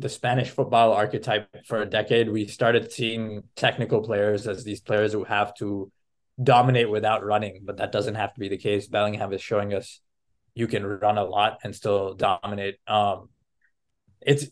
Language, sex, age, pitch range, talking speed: English, male, 20-39, 105-120 Hz, 180 wpm